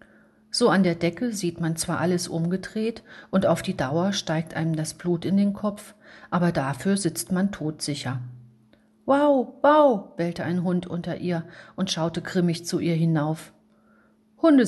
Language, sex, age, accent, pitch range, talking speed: German, female, 40-59, German, 155-195 Hz, 160 wpm